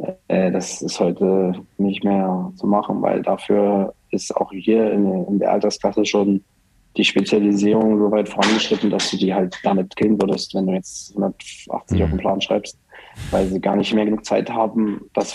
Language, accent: German, German